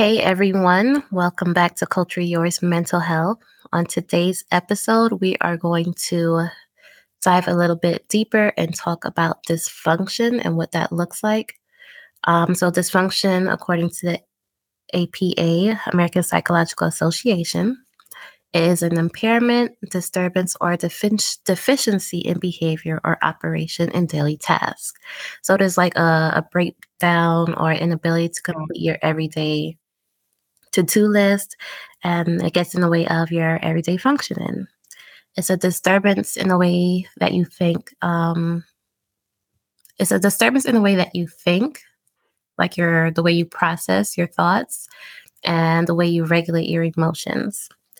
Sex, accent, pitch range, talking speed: female, American, 165-185 Hz, 140 wpm